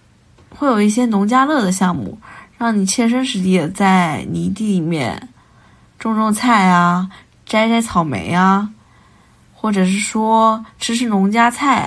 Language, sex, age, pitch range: Chinese, female, 20-39, 185-225 Hz